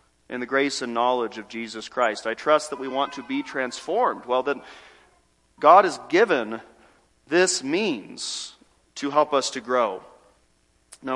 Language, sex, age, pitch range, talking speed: English, male, 40-59, 115-175 Hz, 155 wpm